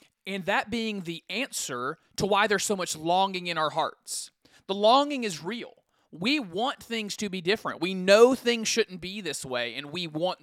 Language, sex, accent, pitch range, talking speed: English, male, American, 155-215 Hz, 195 wpm